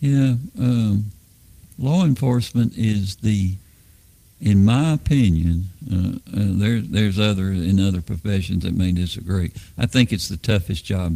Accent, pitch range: American, 90-110 Hz